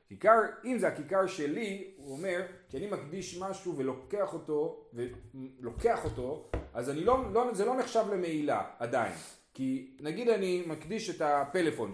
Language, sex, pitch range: Hebrew, male, 155-235 Hz